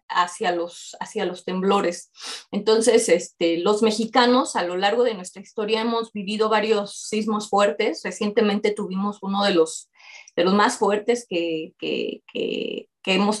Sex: female